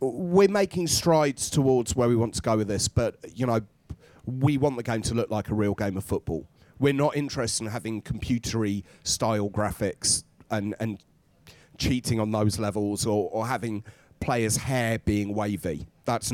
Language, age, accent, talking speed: English, 30-49, British, 175 wpm